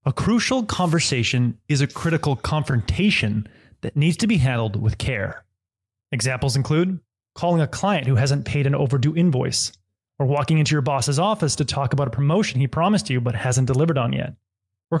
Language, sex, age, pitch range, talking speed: English, male, 20-39, 120-170 Hz, 180 wpm